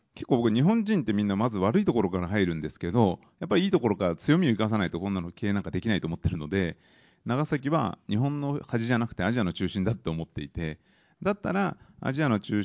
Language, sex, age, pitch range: Japanese, male, 30-49, 90-120 Hz